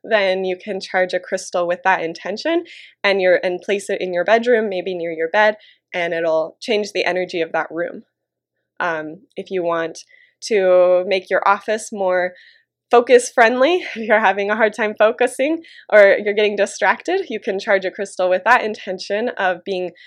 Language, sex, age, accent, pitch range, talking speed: English, female, 20-39, American, 175-210 Hz, 180 wpm